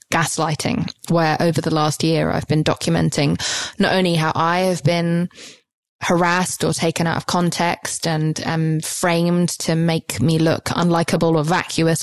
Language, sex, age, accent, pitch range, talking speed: English, female, 20-39, British, 160-175 Hz, 155 wpm